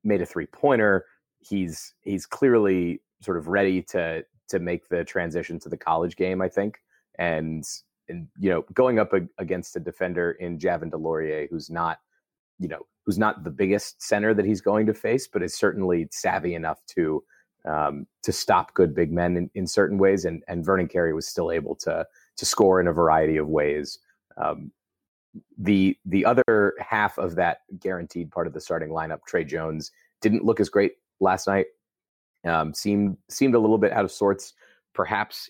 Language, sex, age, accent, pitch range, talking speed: English, male, 30-49, American, 80-100 Hz, 185 wpm